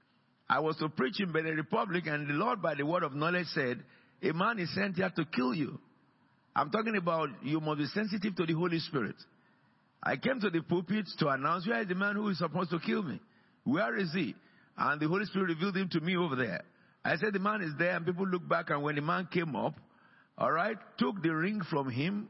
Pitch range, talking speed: 150-195 Hz, 240 wpm